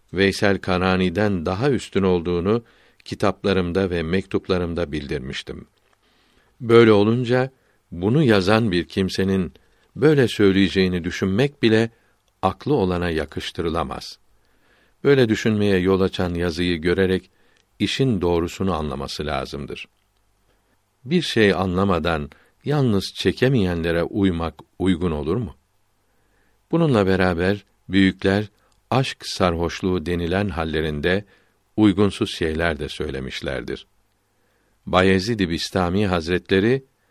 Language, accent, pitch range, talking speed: Turkish, native, 90-105 Hz, 90 wpm